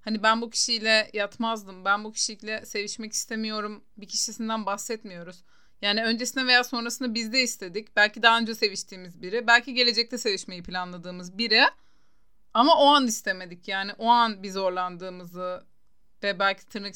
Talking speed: 150 wpm